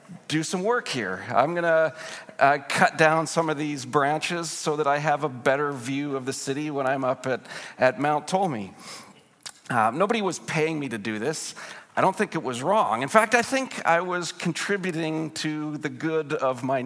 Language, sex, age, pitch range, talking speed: English, male, 40-59, 140-180 Hz, 205 wpm